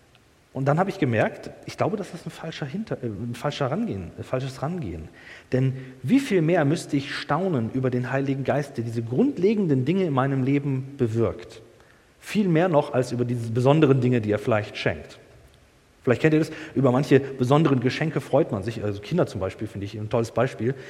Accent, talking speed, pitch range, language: German, 200 wpm, 120-150 Hz, German